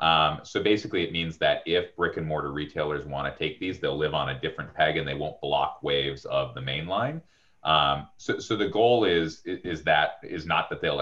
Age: 30-49